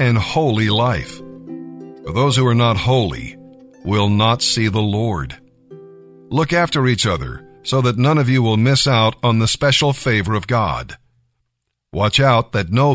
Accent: American